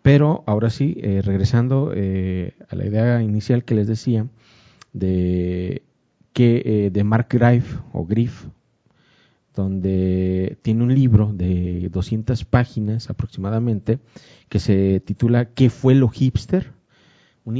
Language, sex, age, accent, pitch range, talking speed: Spanish, male, 40-59, Mexican, 105-130 Hz, 125 wpm